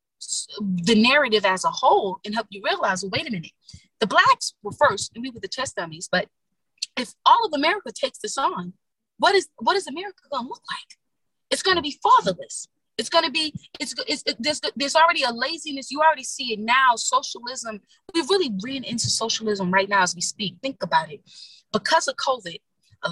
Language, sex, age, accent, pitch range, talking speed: English, female, 30-49, American, 210-345 Hz, 210 wpm